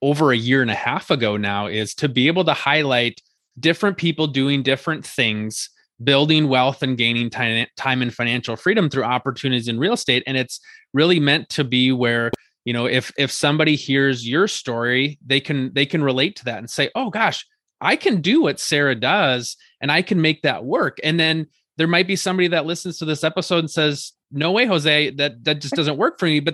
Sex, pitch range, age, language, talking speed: male, 125-150 Hz, 20-39, English, 215 wpm